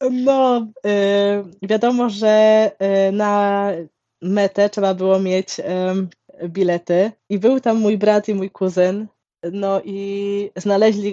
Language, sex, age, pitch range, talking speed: Polish, female, 20-39, 190-215 Hz, 110 wpm